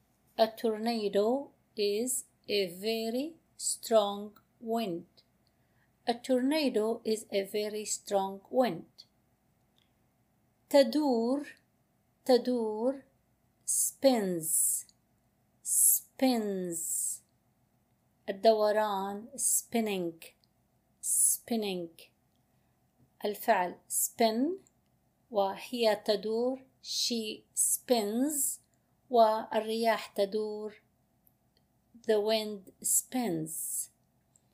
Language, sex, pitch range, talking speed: Arabic, female, 200-245 Hz, 55 wpm